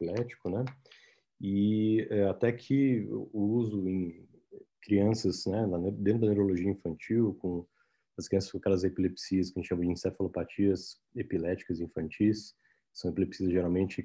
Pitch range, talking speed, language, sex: 95-110 Hz, 130 wpm, Portuguese, male